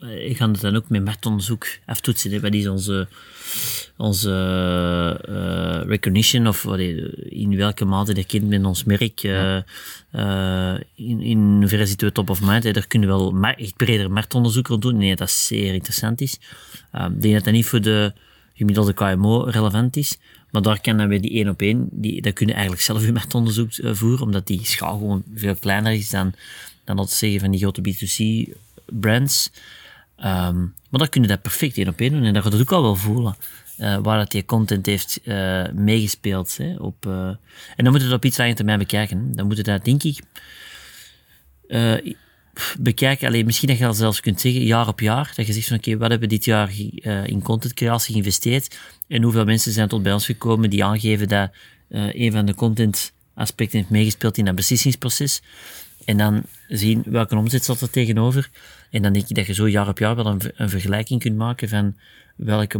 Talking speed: 205 wpm